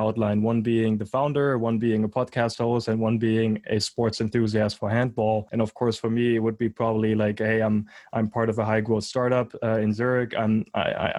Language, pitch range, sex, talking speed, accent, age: English, 110-120 Hz, male, 220 wpm, German, 20-39